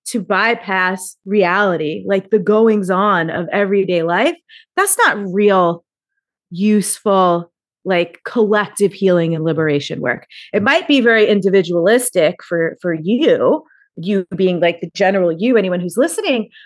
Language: English